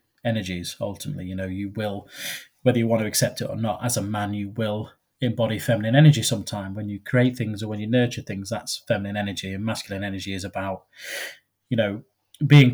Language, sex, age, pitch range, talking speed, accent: English, male, 20-39, 100-125 Hz, 205 wpm, British